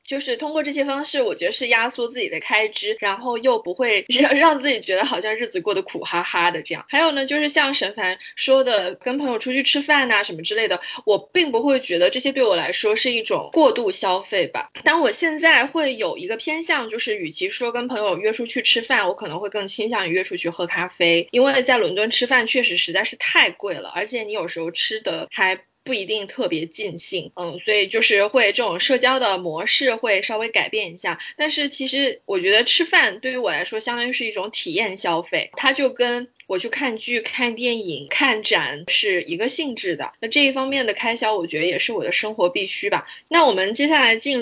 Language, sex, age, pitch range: Chinese, female, 20-39, 195-290 Hz